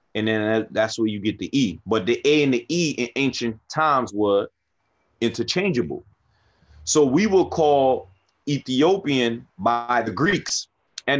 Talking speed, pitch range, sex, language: 150 wpm, 115-155 Hz, male, English